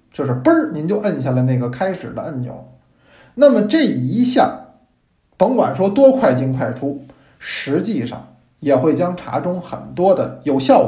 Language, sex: Chinese, male